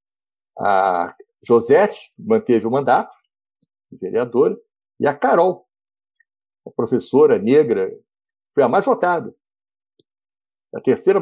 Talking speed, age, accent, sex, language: 100 wpm, 60-79, Brazilian, male, Portuguese